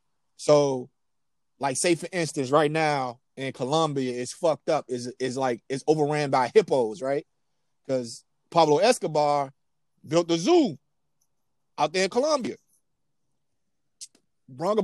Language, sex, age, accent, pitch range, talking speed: English, male, 30-49, American, 145-200 Hz, 120 wpm